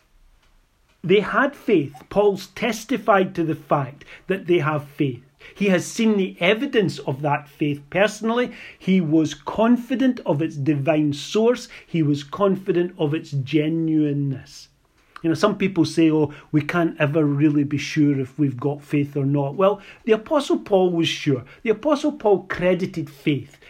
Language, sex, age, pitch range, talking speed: English, male, 40-59, 145-185 Hz, 160 wpm